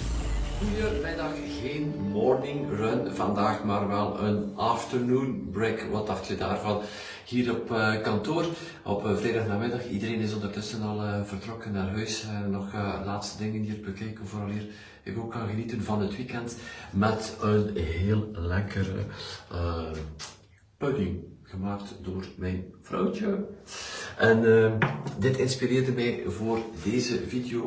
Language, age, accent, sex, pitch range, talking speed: Dutch, 50-69, Swiss, male, 95-110 Hz, 135 wpm